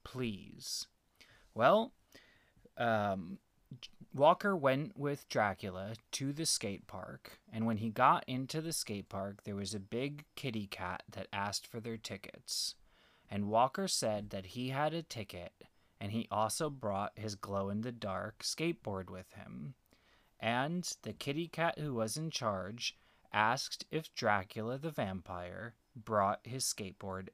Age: 20-39